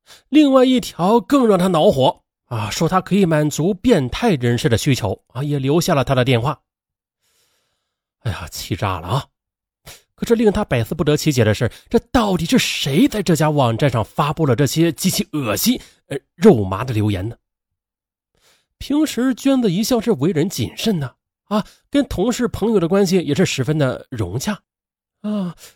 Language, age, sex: Chinese, 30-49, male